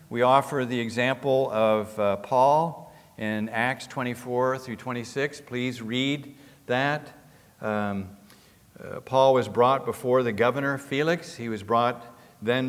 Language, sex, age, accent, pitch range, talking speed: English, male, 50-69, American, 110-135 Hz, 130 wpm